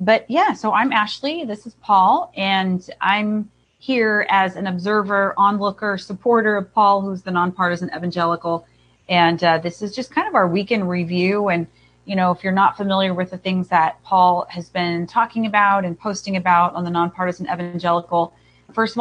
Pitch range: 170-205 Hz